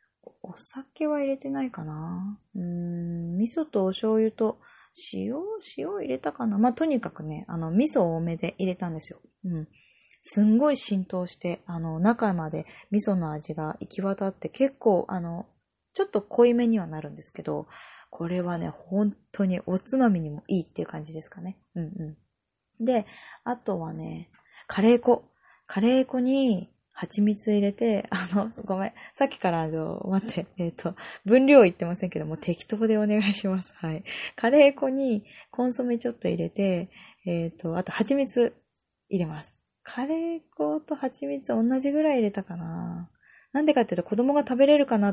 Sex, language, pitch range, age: female, Japanese, 175-245 Hz, 20-39